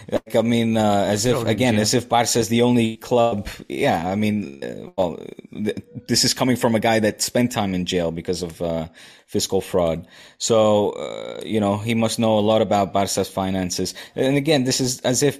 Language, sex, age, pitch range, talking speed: English, male, 20-39, 95-115 Hz, 205 wpm